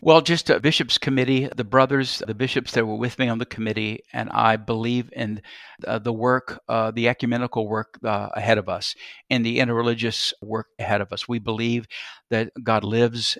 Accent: American